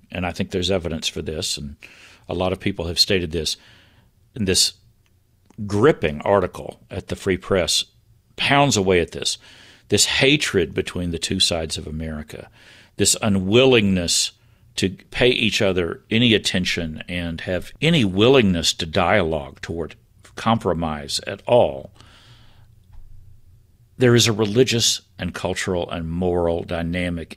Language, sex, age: English, male, 50-69